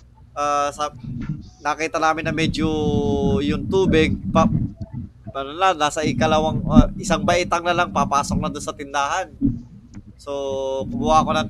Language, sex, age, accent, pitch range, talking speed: Filipino, male, 20-39, native, 115-175 Hz, 140 wpm